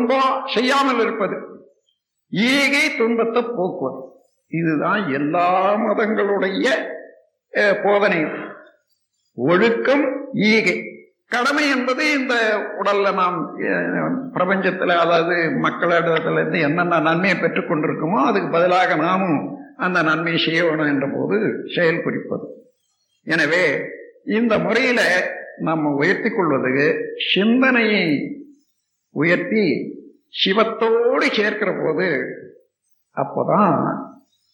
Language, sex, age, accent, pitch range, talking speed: Tamil, male, 60-79, native, 195-260 Hz, 65 wpm